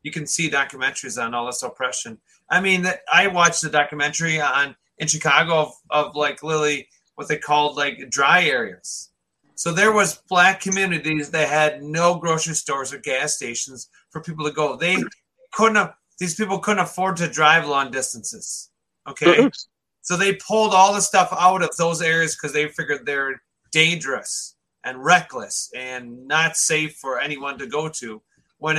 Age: 30-49